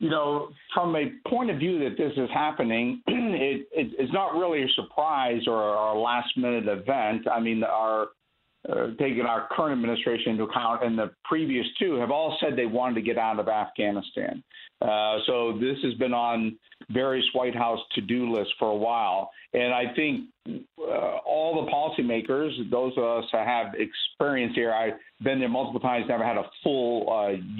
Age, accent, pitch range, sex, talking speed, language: 50-69, American, 115-140 Hz, male, 180 wpm, English